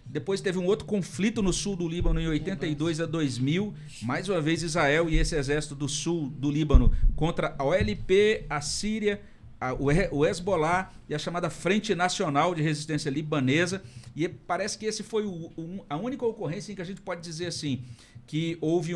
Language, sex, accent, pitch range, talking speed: Portuguese, male, Brazilian, 130-170 Hz, 190 wpm